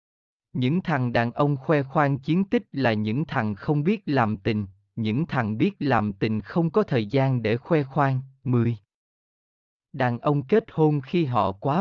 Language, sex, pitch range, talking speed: Vietnamese, male, 110-150 Hz, 180 wpm